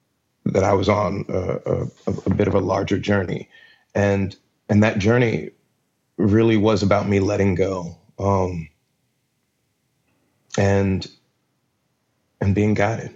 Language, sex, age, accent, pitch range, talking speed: English, male, 30-49, American, 100-115 Hz, 125 wpm